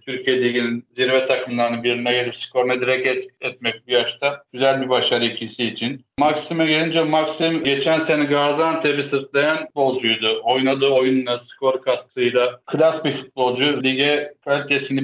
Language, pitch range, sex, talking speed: Turkish, 125-145 Hz, male, 130 wpm